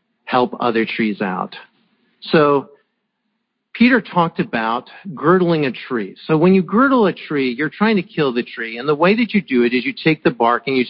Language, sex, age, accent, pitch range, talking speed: English, male, 50-69, American, 135-210 Hz, 205 wpm